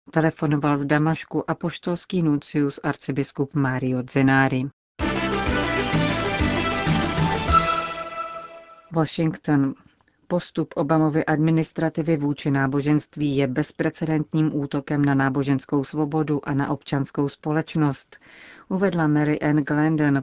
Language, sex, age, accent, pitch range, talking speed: Czech, female, 40-59, native, 145-160 Hz, 85 wpm